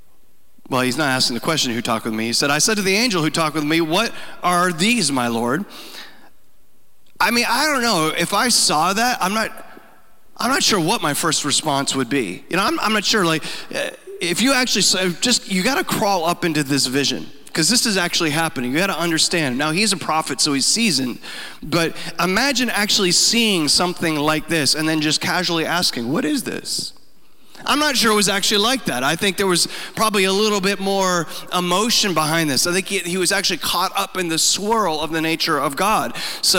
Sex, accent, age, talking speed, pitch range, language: male, American, 30-49, 220 wpm, 155-210 Hz, English